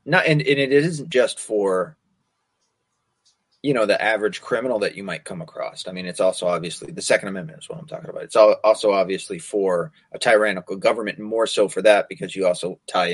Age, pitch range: 30-49, 100-155 Hz